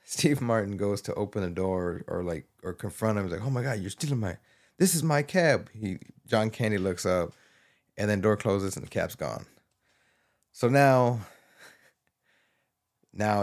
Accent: American